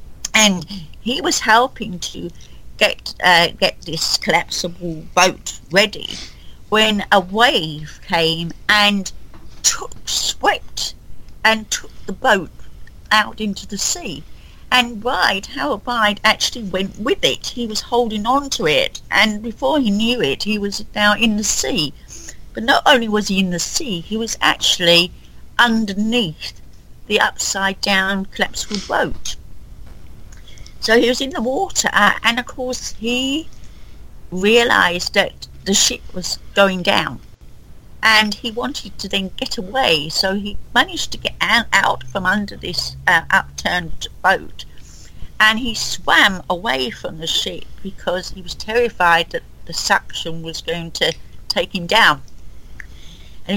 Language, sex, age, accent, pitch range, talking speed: English, female, 50-69, British, 180-235 Hz, 140 wpm